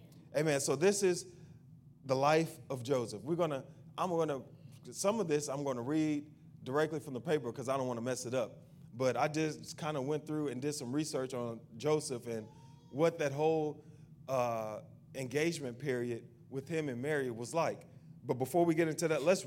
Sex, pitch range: male, 130-160 Hz